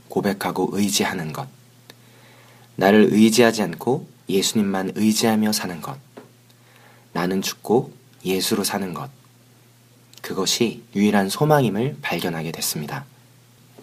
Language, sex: Korean, male